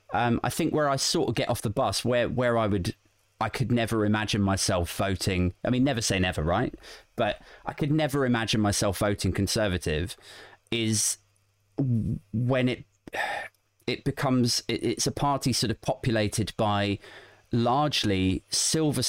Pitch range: 95-120 Hz